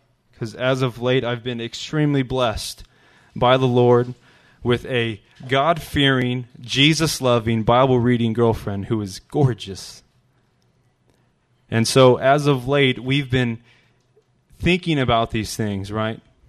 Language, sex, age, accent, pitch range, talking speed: English, male, 20-39, American, 115-135 Hz, 115 wpm